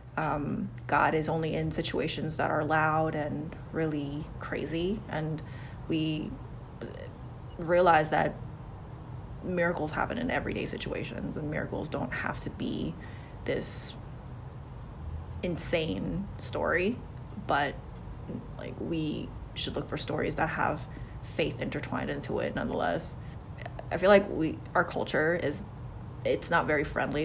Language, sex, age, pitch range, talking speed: English, female, 20-39, 140-165 Hz, 120 wpm